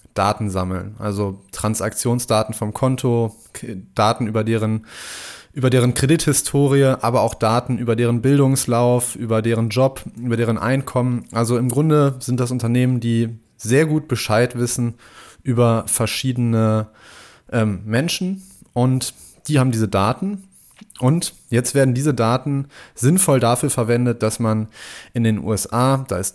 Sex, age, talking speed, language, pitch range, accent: male, 20-39, 130 wpm, German, 110-130 Hz, German